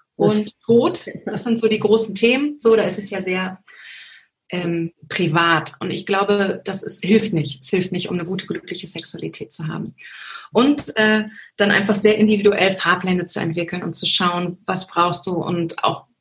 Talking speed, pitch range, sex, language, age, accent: 185 wpm, 180-225 Hz, female, German, 30-49, German